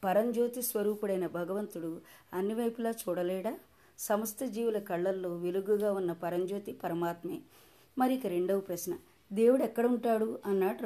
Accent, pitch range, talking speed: native, 175-220 Hz, 105 wpm